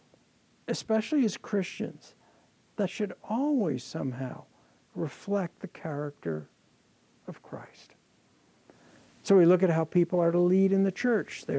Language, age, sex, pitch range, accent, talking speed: English, 60-79, male, 170-215 Hz, American, 130 wpm